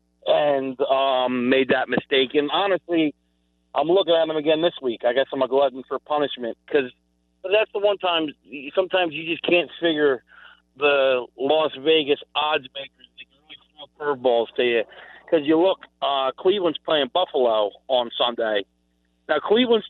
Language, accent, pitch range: English, American, 125-170 Hz